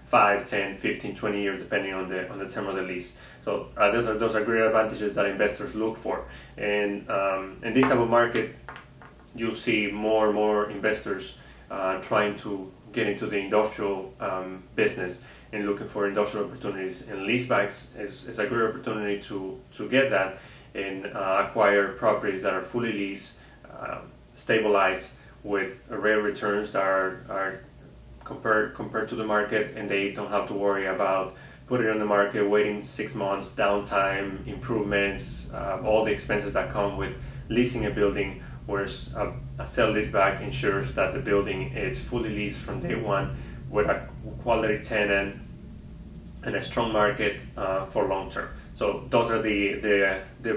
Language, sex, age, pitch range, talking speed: English, male, 30-49, 100-115 Hz, 175 wpm